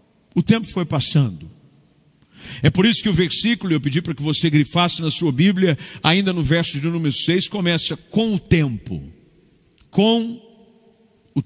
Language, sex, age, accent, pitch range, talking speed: Portuguese, male, 50-69, Brazilian, 145-195 Hz, 160 wpm